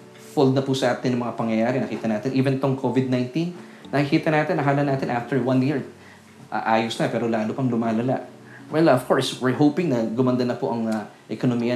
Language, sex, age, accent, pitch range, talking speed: Filipino, male, 20-39, native, 125-150 Hz, 195 wpm